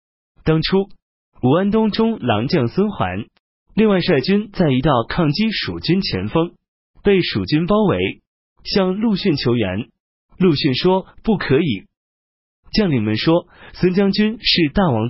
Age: 30-49